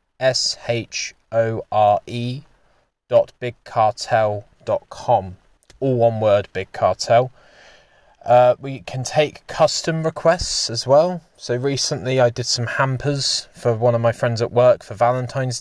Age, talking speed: 20-39, 135 wpm